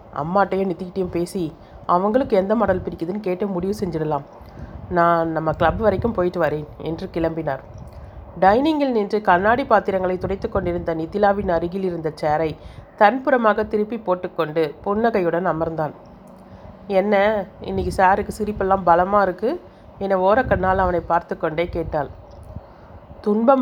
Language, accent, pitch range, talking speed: Tamil, native, 160-210 Hz, 115 wpm